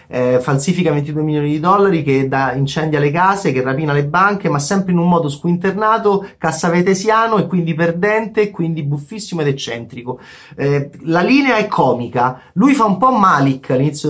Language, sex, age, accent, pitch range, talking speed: Italian, male, 30-49, native, 135-190 Hz, 165 wpm